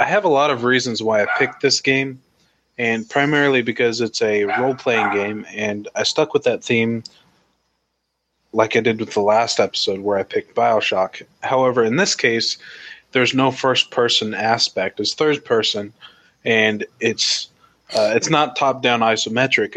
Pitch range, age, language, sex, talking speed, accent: 110-140 Hz, 20-39, English, male, 160 wpm, American